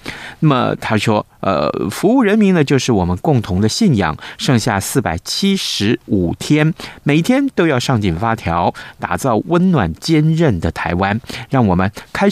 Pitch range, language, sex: 100-140 Hz, Chinese, male